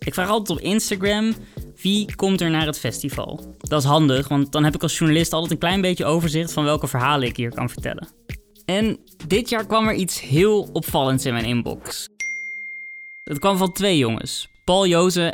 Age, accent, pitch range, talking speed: 20-39, Dutch, 140-175 Hz, 195 wpm